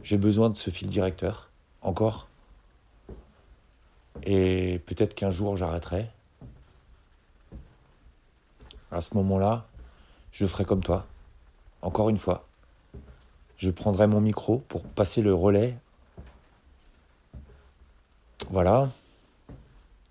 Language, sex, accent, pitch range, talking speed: French, male, French, 80-105 Hz, 95 wpm